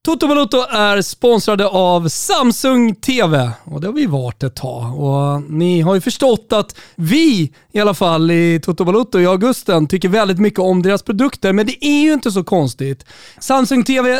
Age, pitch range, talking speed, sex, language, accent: 30-49, 160-230 Hz, 180 wpm, male, Swedish, native